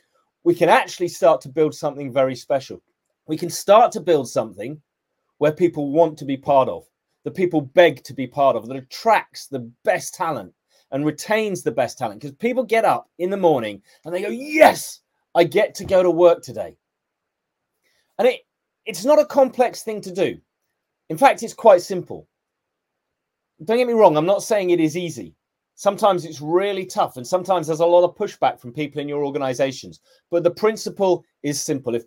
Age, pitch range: 30-49, 140-205 Hz